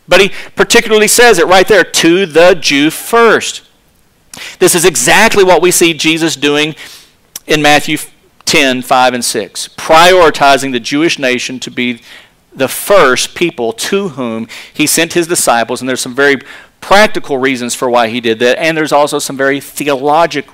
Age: 40-59